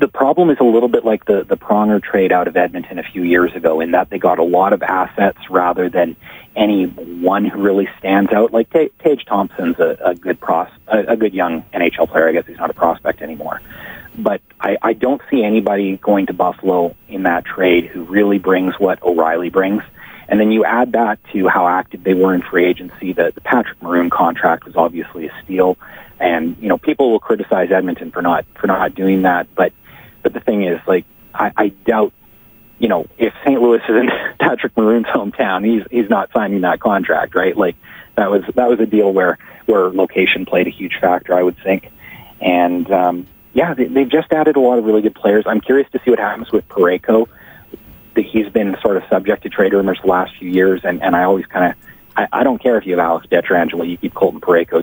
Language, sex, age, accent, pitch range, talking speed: English, male, 30-49, American, 90-115 Hz, 220 wpm